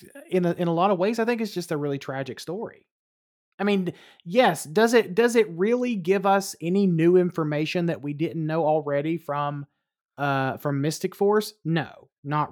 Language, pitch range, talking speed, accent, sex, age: English, 150-185 Hz, 185 wpm, American, male, 30-49